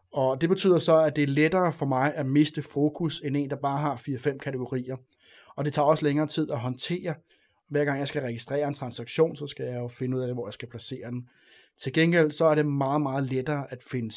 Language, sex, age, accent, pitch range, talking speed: Danish, male, 30-49, native, 130-155 Hz, 245 wpm